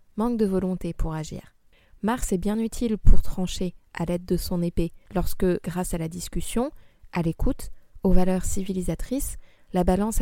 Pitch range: 170-200 Hz